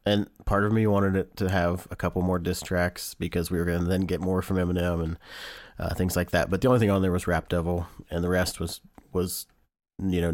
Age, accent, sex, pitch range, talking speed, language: 30-49, American, male, 90-105 Hz, 255 wpm, English